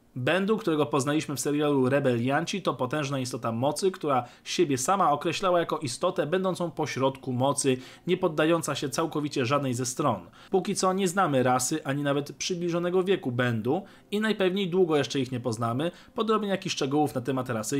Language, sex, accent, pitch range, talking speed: Polish, male, native, 130-180 Hz, 170 wpm